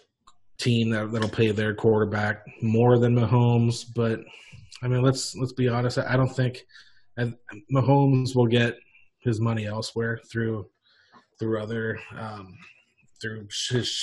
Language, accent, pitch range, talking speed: English, American, 115-130 Hz, 145 wpm